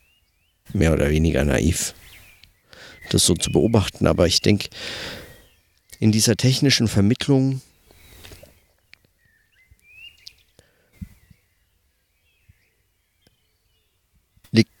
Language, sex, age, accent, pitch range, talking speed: German, male, 50-69, German, 85-115 Hz, 65 wpm